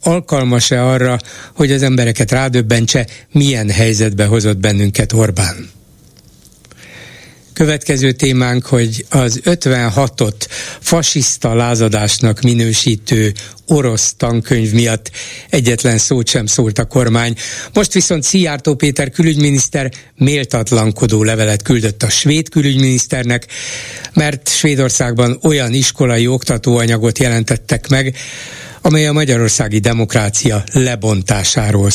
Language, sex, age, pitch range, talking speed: Hungarian, male, 60-79, 115-140 Hz, 95 wpm